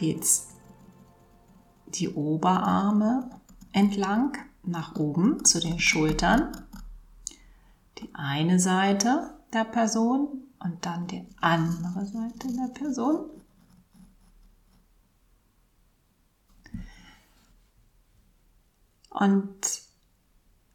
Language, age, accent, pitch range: German, 40-59, German, 165-215 Hz